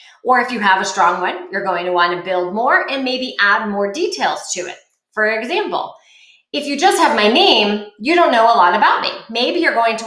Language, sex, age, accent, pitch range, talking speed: English, female, 30-49, American, 195-255 Hz, 240 wpm